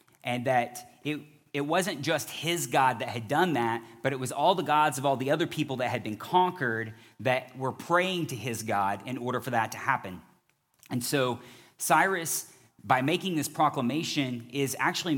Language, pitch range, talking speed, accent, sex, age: English, 115-140 Hz, 190 wpm, American, male, 30-49